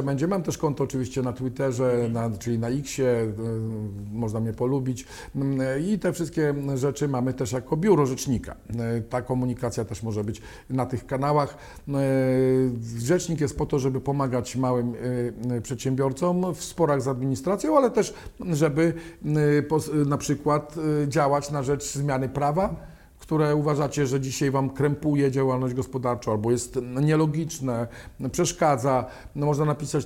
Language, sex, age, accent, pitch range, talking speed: Polish, male, 50-69, native, 130-150 Hz, 130 wpm